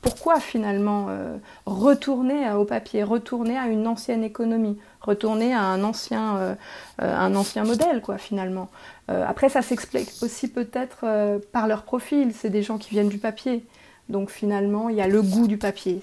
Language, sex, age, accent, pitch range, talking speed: French, female, 30-49, French, 195-225 Hz, 180 wpm